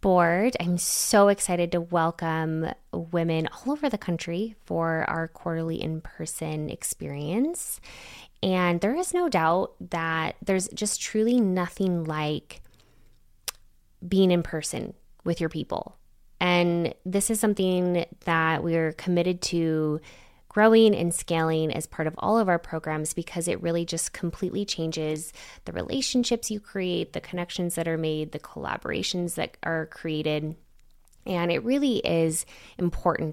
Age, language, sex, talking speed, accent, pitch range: 20-39, English, female, 135 wpm, American, 160-190 Hz